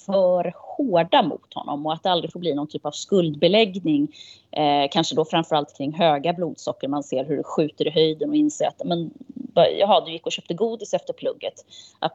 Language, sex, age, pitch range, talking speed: Swedish, female, 20-39, 150-185 Hz, 200 wpm